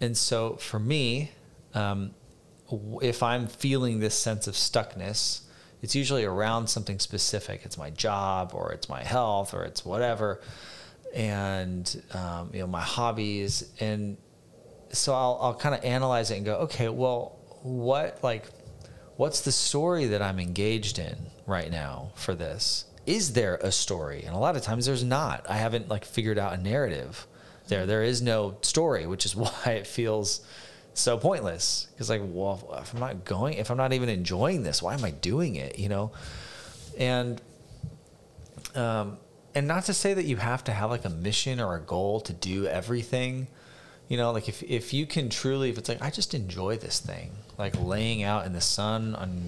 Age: 30-49